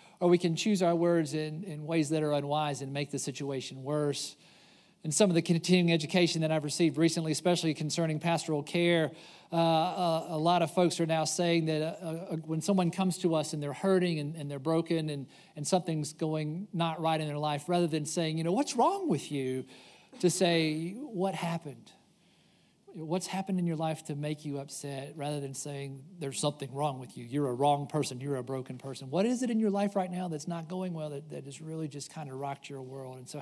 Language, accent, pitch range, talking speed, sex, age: English, American, 150-180 Hz, 225 wpm, male, 50-69